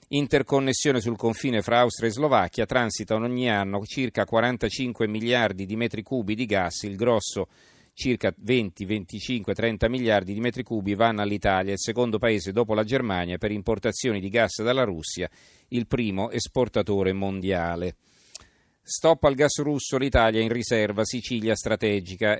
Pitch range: 105-125 Hz